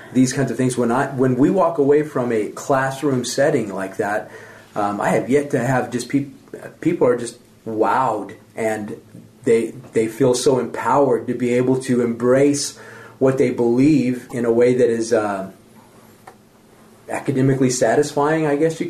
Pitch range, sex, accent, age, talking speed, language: 115-145 Hz, male, American, 40-59, 165 wpm, English